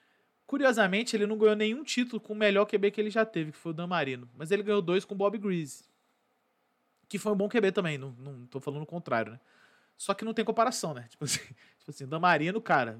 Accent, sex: Brazilian, male